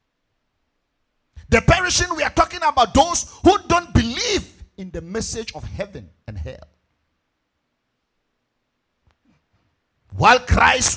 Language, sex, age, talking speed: English, male, 50-69, 105 wpm